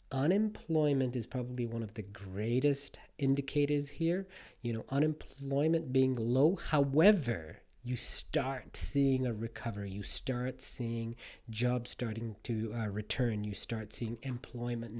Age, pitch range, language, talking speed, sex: 40-59, 115-140 Hz, English, 130 wpm, male